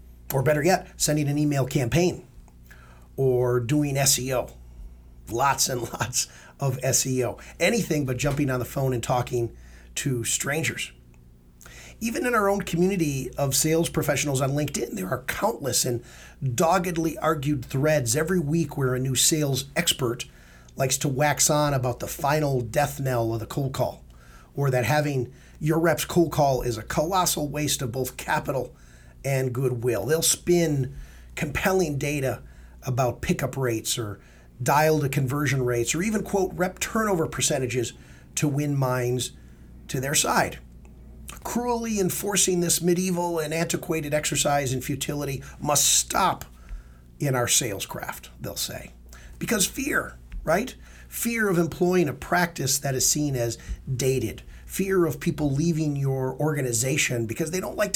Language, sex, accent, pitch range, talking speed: English, male, American, 120-160 Hz, 145 wpm